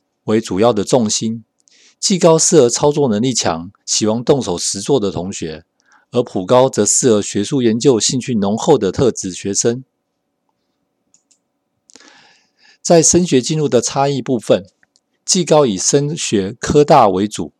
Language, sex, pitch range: Chinese, male, 105-145 Hz